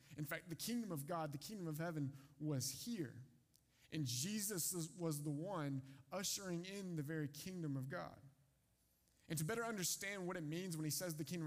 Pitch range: 135-170 Hz